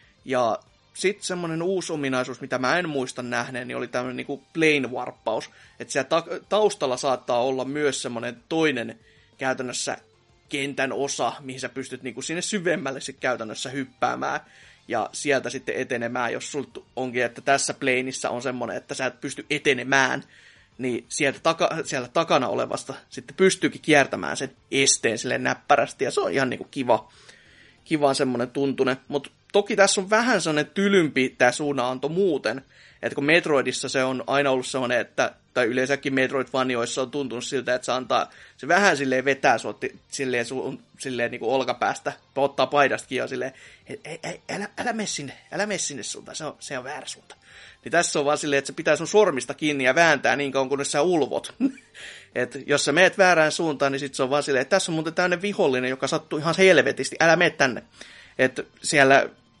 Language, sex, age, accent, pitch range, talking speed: Finnish, male, 30-49, native, 130-160 Hz, 175 wpm